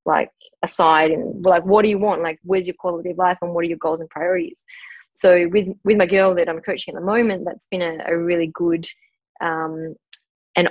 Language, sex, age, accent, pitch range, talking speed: English, female, 10-29, Australian, 165-205 Hz, 225 wpm